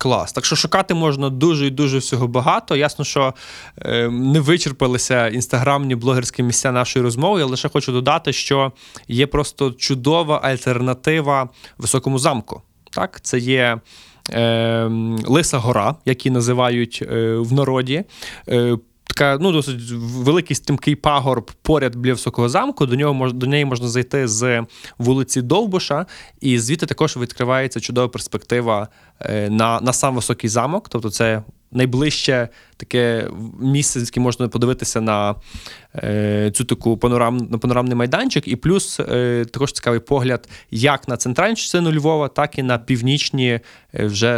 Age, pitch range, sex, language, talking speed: 20-39, 120-145 Hz, male, Ukrainian, 145 wpm